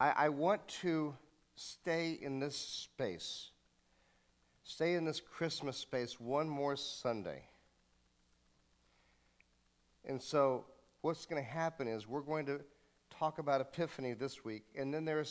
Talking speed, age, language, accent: 135 wpm, 50-69, English, American